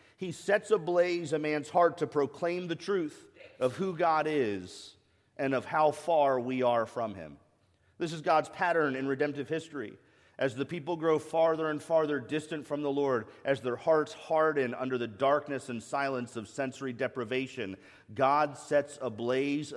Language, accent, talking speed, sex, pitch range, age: English, American, 165 wpm, male, 110-155 Hz, 40-59